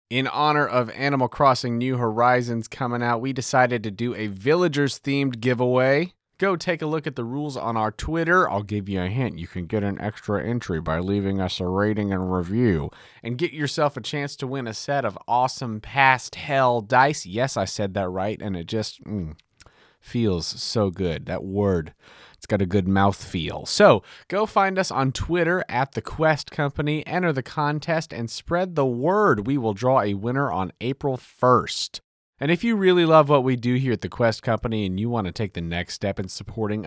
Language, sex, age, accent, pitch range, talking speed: English, male, 30-49, American, 105-145 Hz, 205 wpm